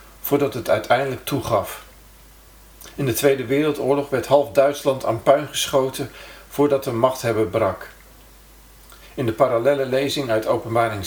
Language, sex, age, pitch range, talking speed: Dutch, male, 50-69, 115-140 Hz, 130 wpm